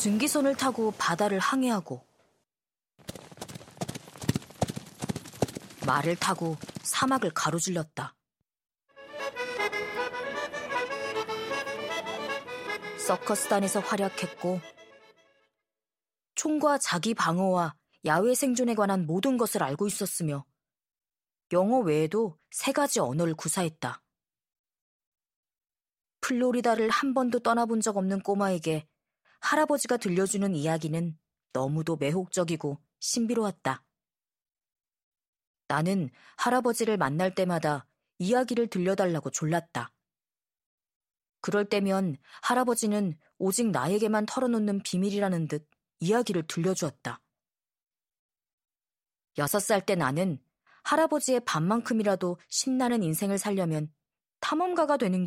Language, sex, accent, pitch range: Korean, female, native, 165-235 Hz